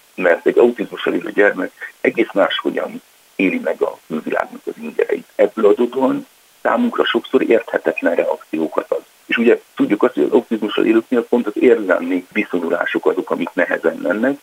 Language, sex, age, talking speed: Hungarian, male, 60-79, 145 wpm